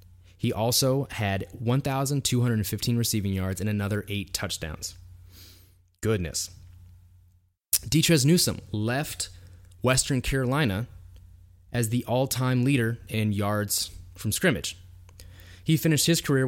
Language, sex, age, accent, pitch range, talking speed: English, male, 20-39, American, 90-125 Hz, 100 wpm